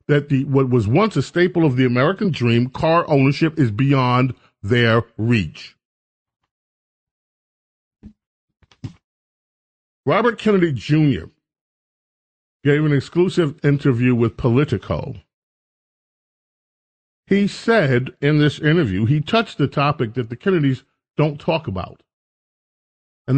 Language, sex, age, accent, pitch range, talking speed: English, male, 40-59, American, 120-150 Hz, 110 wpm